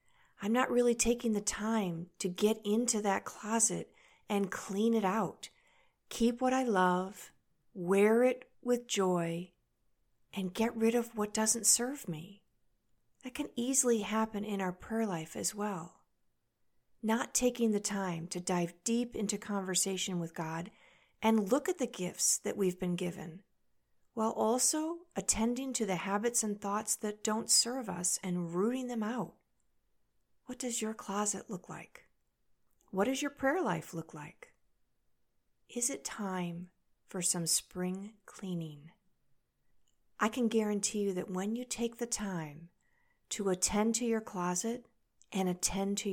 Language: English